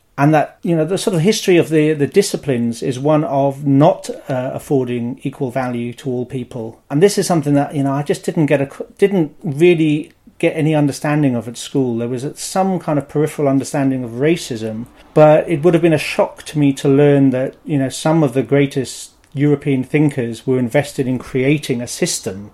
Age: 40-59